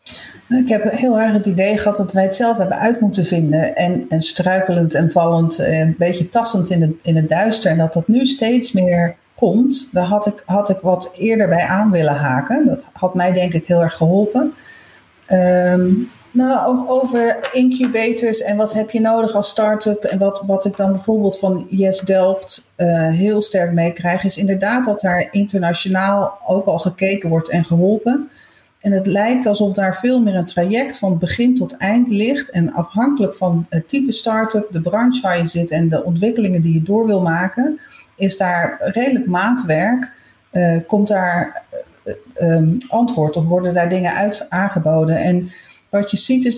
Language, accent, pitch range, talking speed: Dutch, Dutch, 175-225 Hz, 185 wpm